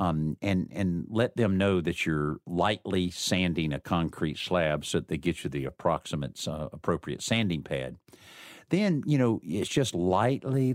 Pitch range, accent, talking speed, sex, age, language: 85-105 Hz, American, 165 wpm, male, 50-69, English